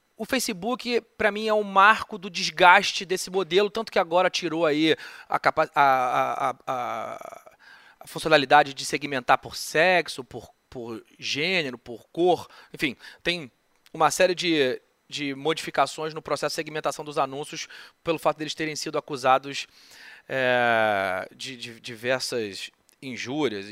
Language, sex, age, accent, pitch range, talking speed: Portuguese, male, 30-49, Brazilian, 135-190 Hz, 145 wpm